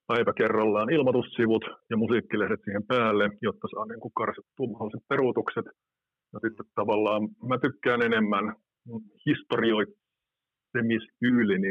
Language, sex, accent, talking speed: Finnish, male, native, 95 wpm